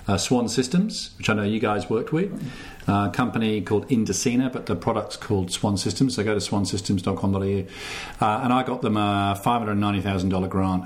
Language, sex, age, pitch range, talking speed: English, male, 40-59, 95-105 Hz, 170 wpm